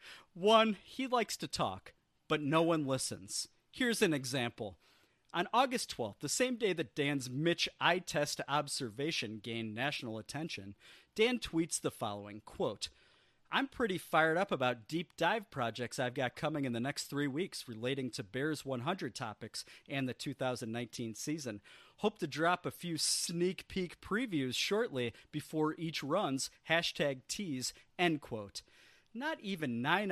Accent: American